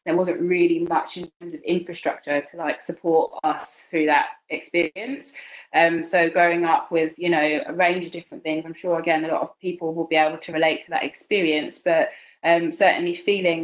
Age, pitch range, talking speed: 20-39, 165-190 Hz, 200 wpm